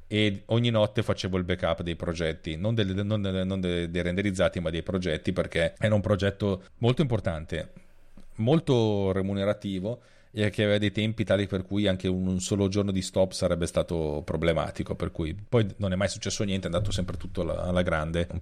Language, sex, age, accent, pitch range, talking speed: Italian, male, 40-59, native, 90-110 Hz, 190 wpm